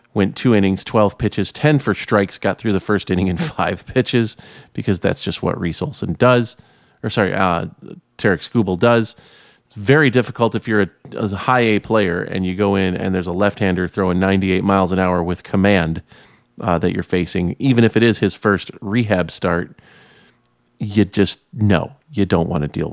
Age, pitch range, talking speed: 30-49, 95-110 Hz, 195 wpm